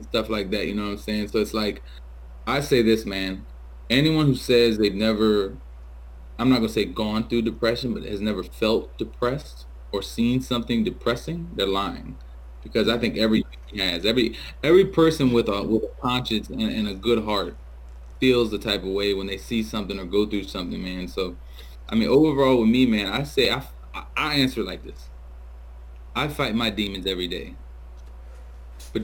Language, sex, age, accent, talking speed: English, male, 20-39, American, 190 wpm